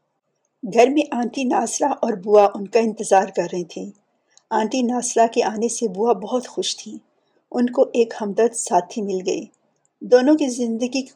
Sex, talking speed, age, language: female, 170 wpm, 50-69, Urdu